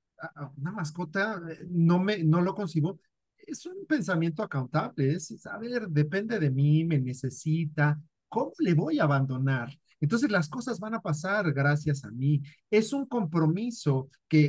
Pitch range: 145-195 Hz